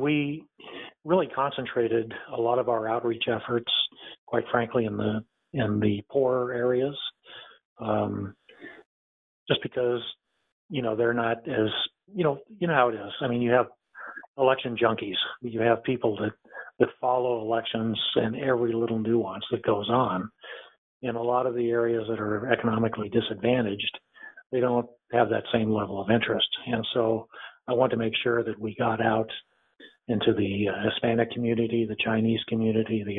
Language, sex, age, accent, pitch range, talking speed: English, male, 50-69, American, 110-125 Hz, 165 wpm